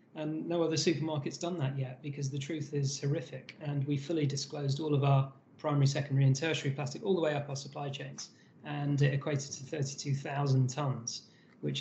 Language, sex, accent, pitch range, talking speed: English, male, British, 135-150 Hz, 195 wpm